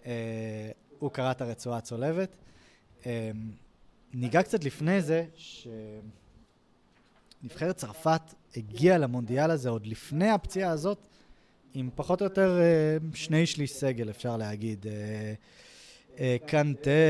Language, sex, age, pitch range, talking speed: Hebrew, male, 20-39, 125-160 Hz, 115 wpm